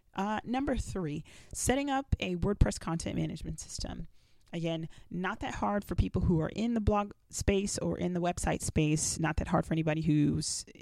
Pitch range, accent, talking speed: 155-190 Hz, American, 185 wpm